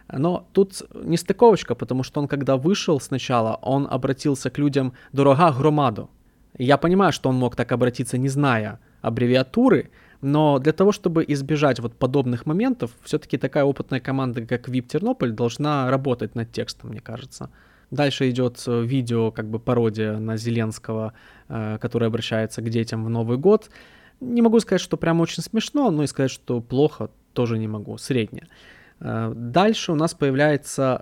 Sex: male